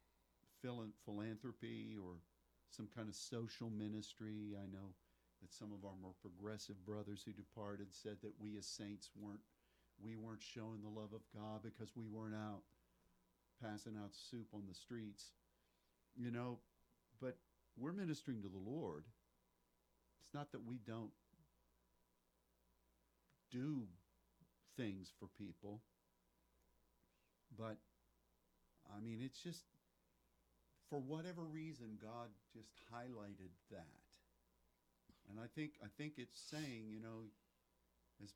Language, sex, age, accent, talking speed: English, male, 50-69, American, 125 wpm